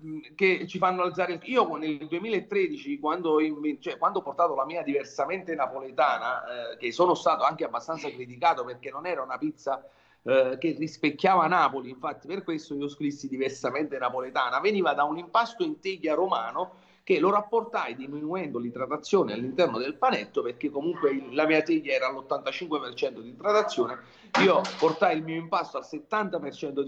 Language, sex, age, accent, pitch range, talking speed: Italian, male, 40-59, native, 145-245 Hz, 155 wpm